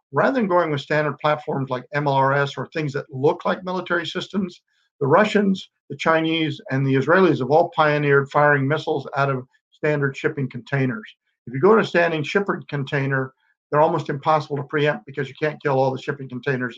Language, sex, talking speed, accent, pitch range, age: English, male, 190 wpm, American, 135-155 Hz, 50-69